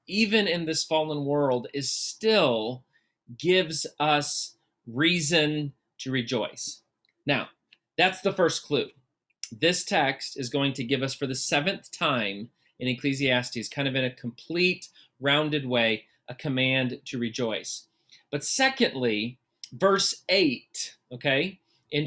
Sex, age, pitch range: male, 30-49, 130-165 Hz